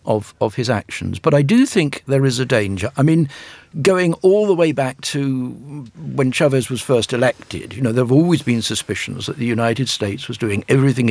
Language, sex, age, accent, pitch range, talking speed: English, male, 60-79, British, 110-145 Hz, 210 wpm